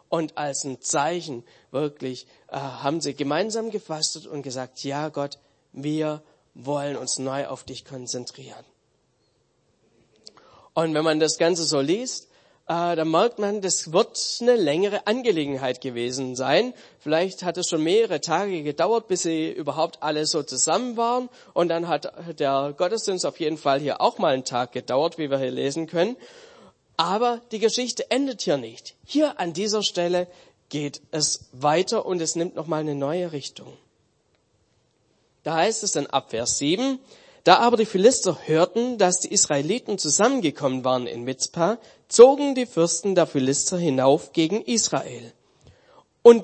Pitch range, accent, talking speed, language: 140-205 Hz, German, 155 wpm, German